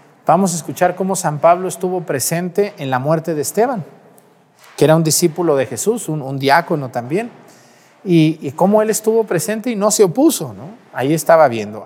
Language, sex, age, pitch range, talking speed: Spanish, male, 40-59, 155-195 Hz, 185 wpm